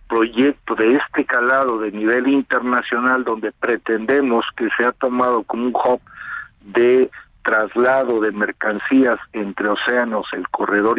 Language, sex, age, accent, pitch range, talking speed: Spanish, male, 50-69, Mexican, 115-140 Hz, 125 wpm